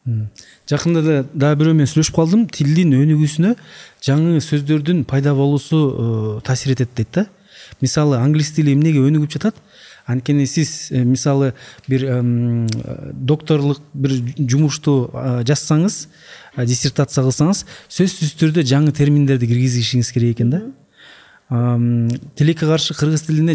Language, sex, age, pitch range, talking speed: Russian, male, 30-49, 125-155 Hz, 90 wpm